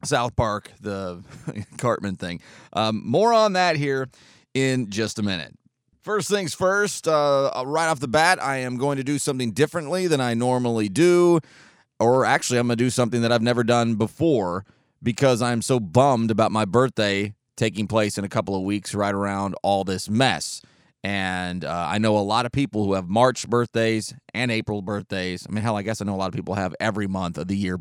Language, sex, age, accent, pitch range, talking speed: English, male, 30-49, American, 105-140 Hz, 205 wpm